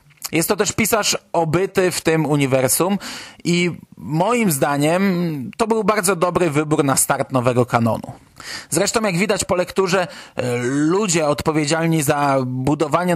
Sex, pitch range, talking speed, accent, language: male, 140-180 Hz, 130 wpm, native, Polish